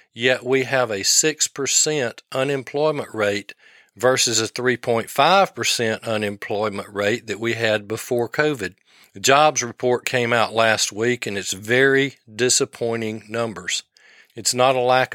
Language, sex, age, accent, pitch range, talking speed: English, male, 40-59, American, 115-145 Hz, 130 wpm